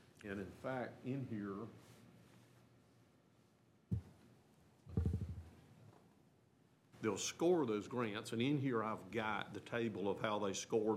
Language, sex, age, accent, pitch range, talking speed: English, male, 50-69, American, 105-115 Hz, 110 wpm